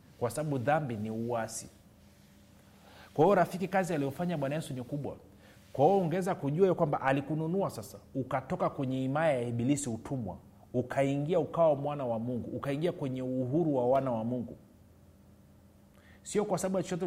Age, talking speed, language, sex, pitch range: 30-49, 160 wpm, Swahili, male, 115-150 Hz